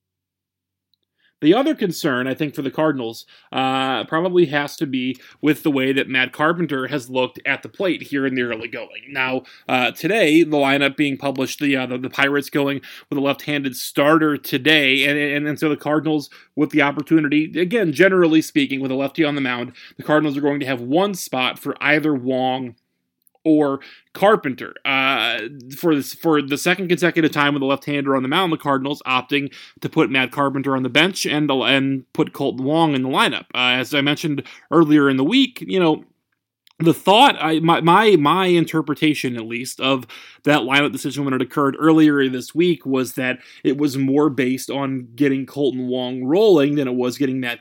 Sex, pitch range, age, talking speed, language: male, 130-155 Hz, 30-49, 200 wpm, English